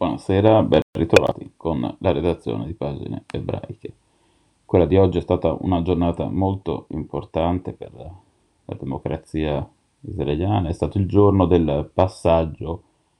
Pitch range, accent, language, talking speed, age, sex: 85-105 Hz, native, Italian, 125 wpm, 30-49, male